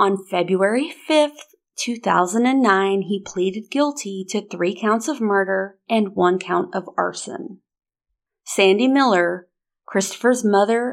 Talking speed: 115 wpm